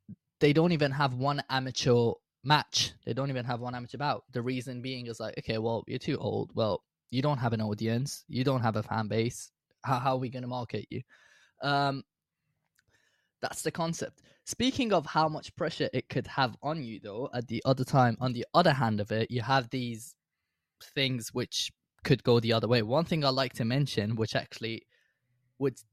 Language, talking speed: English, 205 wpm